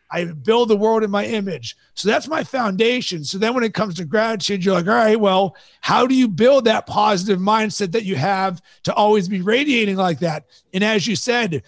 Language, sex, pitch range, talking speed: English, male, 190-225 Hz, 220 wpm